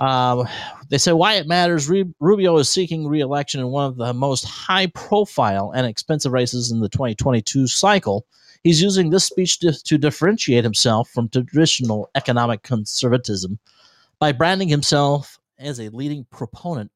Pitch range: 120-160 Hz